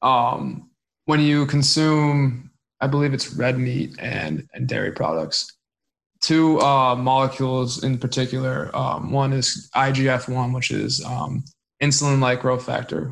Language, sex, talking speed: English, male, 135 wpm